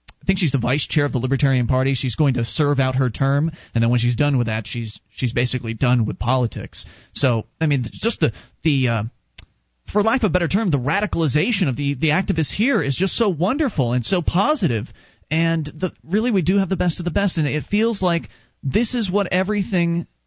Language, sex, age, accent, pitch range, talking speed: English, male, 30-49, American, 125-185 Hz, 230 wpm